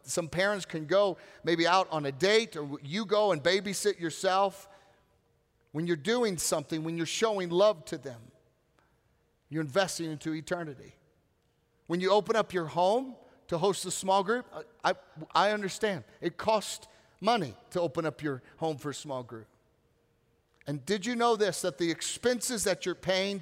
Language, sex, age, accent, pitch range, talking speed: English, male, 40-59, American, 155-200 Hz, 170 wpm